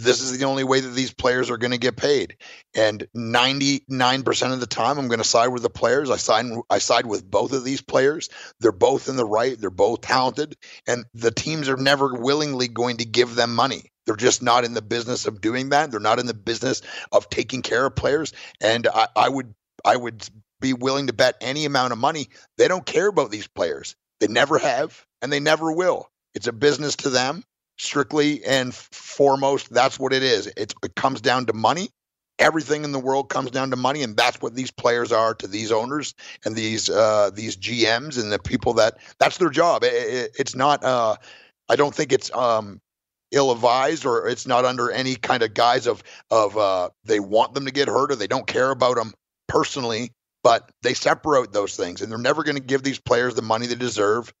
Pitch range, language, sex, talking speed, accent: 120-140 Hz, English, male, 215 wpm, American